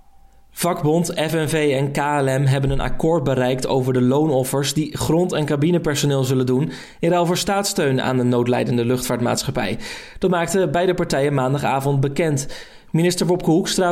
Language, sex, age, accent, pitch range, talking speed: Dutch, male, 20-39, Dutch, 135-175 Hz, 145 wpm